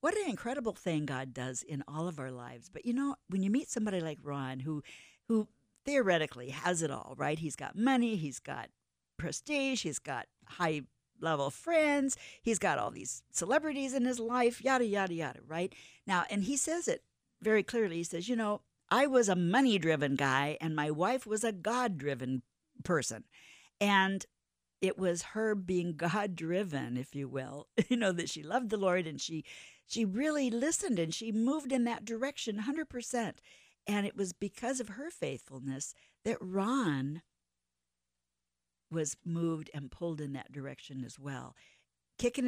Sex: female